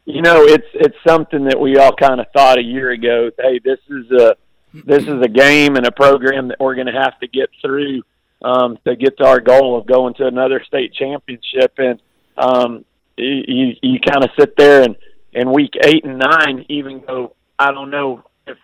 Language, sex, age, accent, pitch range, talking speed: English, male, 40-59, American, 125-150 Hz, 210 wpm